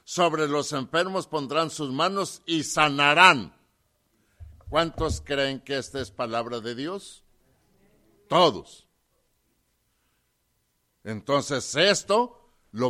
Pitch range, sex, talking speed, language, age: 120-160 Hz, male, 95 wpm, English, 60-79